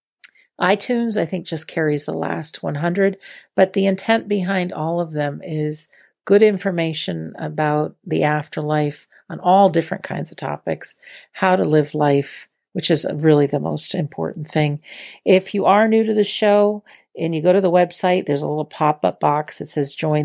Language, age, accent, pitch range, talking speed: English, 50-69, American, 150-195 Hz, 175 wpm